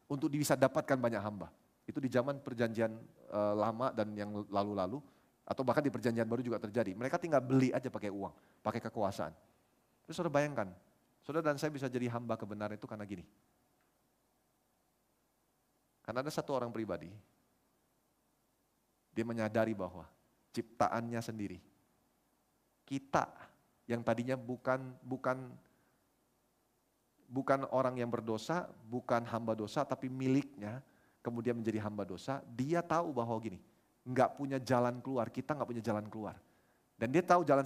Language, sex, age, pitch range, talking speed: Indonesian, male, 30-49, 115-145 Hz, 135 wpm